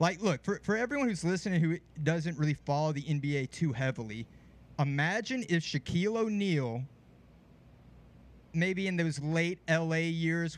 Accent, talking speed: American, 140 wpm